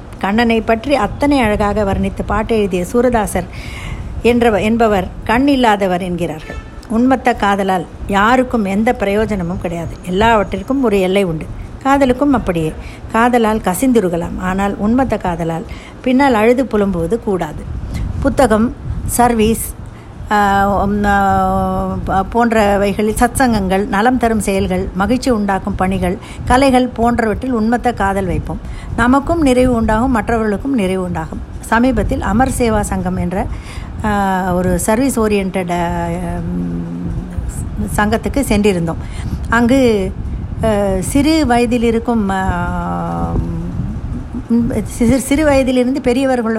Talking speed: 95 wpm